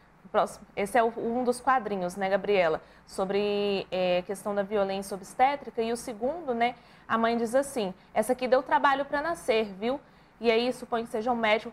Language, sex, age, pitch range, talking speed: Portuguese, female, 20-39, 225-280 Hz, 185 wpm